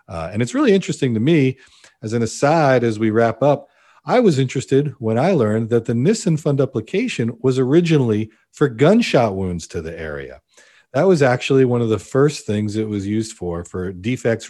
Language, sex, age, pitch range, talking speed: English, male, 40-59, 95-130 Hz, 195 wpm